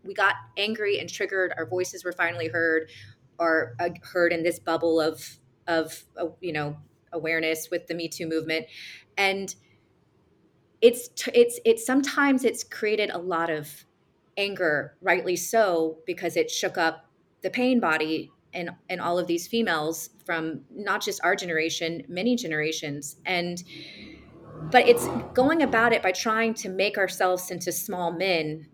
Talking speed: 155 wpm